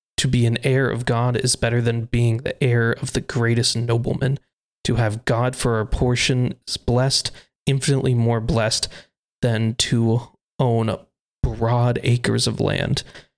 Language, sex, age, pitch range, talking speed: English, male, 20-39, 115-130 Hz, 150 wpm